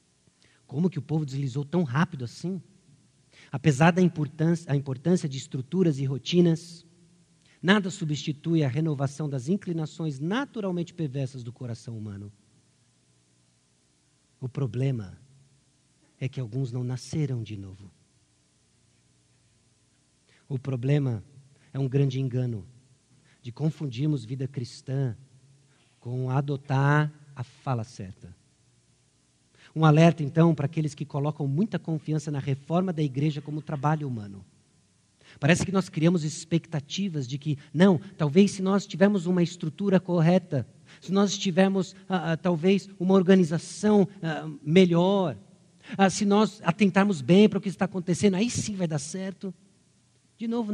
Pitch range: 130-175 Hz